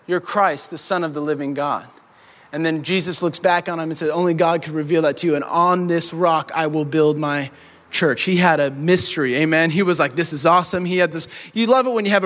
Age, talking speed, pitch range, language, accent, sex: 20-39, 260 wpm, 170-260 Hz, English, American, male